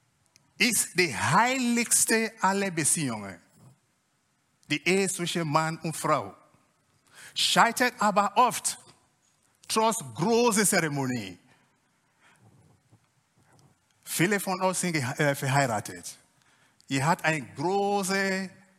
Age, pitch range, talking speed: 50-69, 150-215 Hz, 90 wpm